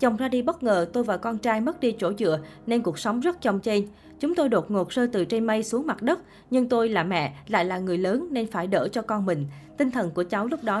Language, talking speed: Vietnamese, 280 wpm